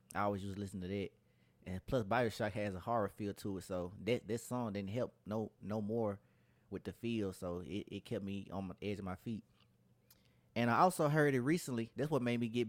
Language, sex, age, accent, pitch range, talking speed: English, male, 20-39, American, 95-120 Hz, 235 wpm